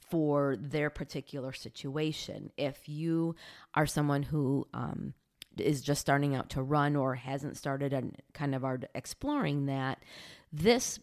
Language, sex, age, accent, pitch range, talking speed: English, female, 30-49, American, 130-155 Hz, 140 wpm